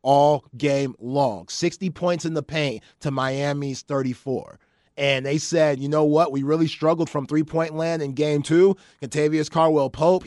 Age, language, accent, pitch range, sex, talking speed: 30-49, English, American, 145-170 Hz, male, 165 wpm